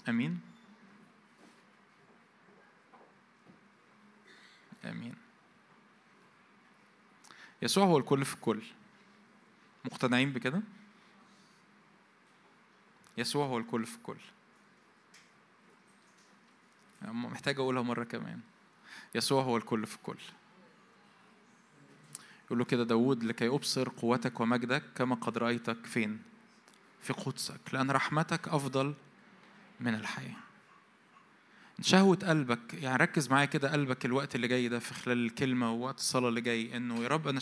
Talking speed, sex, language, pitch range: 105 wpm, male, Arabic, 120-190 Hz